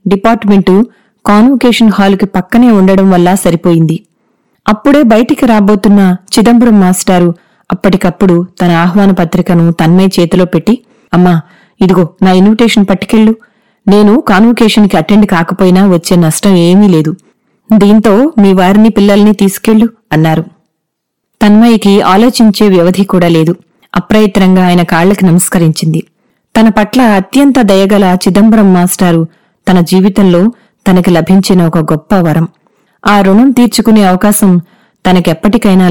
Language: Telugu